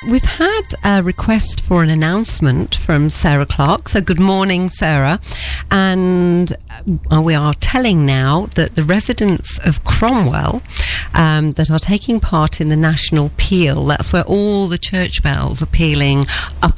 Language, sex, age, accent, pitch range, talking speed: English, female, 50-69, British, 140-180 Hz, 150 wpm